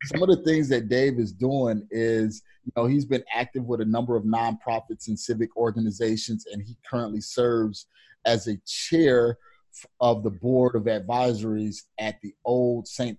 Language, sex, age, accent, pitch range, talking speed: English, male, 30-49, American, 110-130 Hz, 175 wpm